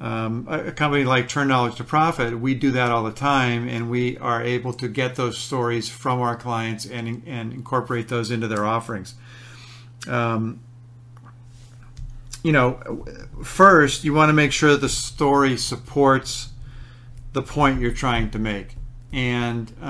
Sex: male